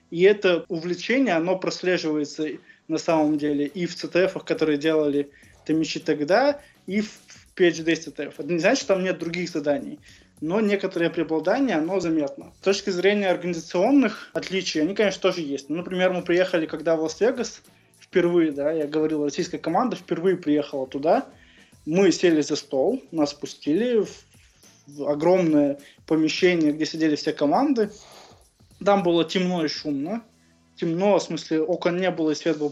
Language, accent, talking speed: Russian, native, 150 wpm